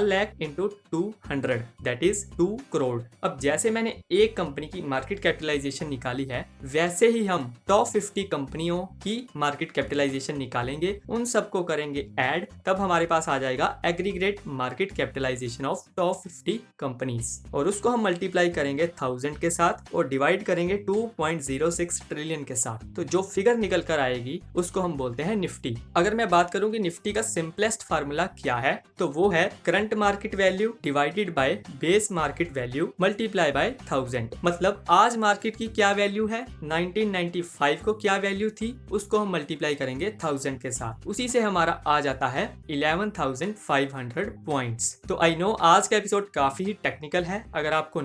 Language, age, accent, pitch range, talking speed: Hindi, 20-39, native, 145-200 Hz, 130 wpm